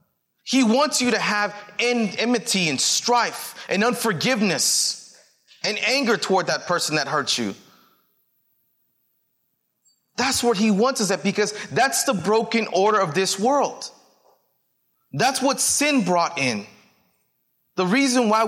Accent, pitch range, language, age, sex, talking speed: American, 155-225 Hz, English, 30-49, male, 130 wpm